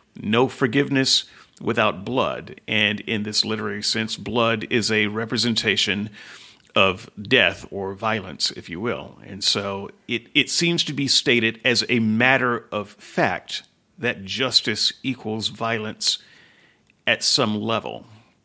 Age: 40-59